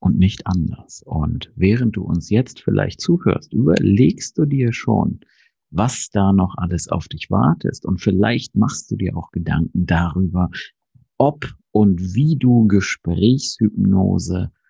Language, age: German, 50-69